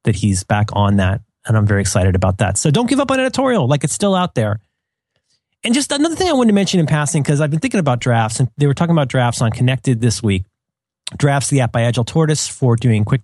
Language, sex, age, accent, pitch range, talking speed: English, male, 30-49, American, 115-165 Hz, 260 wpm